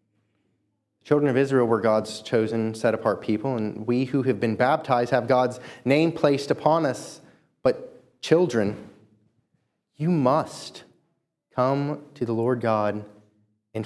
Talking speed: 130 wpm